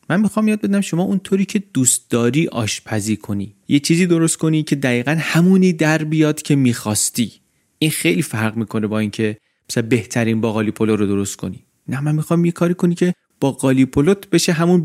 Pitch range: 115-155 Hz